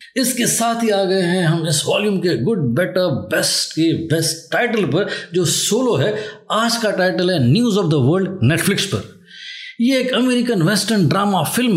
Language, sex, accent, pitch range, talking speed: Hindi, male, native, 160-210 Hz, 185 wpm